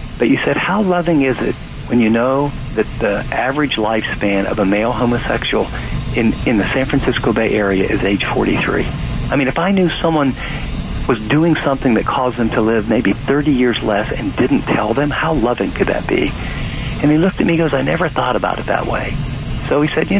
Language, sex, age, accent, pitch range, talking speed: English, male, 50-69, American, 110-145 Hz, 215 wpm